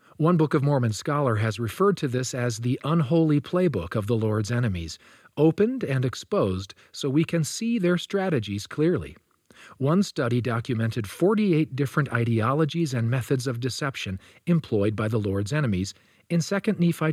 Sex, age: male, 40-59